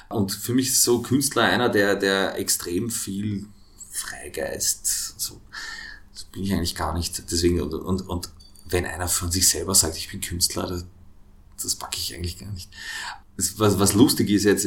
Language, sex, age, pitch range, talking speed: German, male, 30-49, 95-115 Hz, 185 wpm